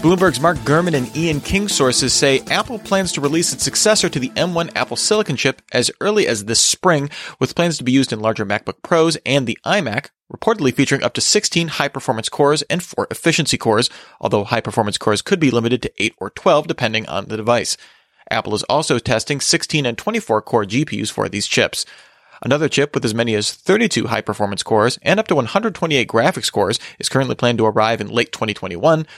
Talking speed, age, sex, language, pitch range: 200 wpm, 30-49, male, English, 115-165 Hz